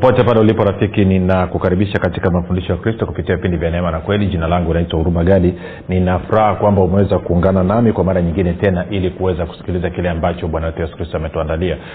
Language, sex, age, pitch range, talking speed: Swahili, male, 40-59, 90-105 Hz, 190 wpm